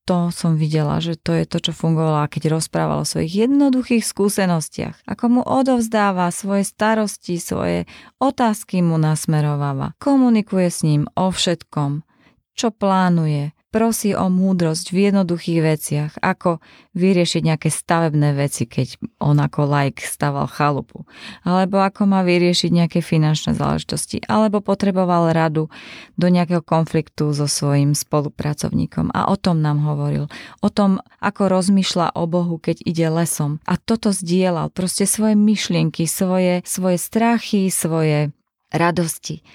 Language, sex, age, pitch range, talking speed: Slovak, female, 20-39, 160-200 Hz, 135 wpm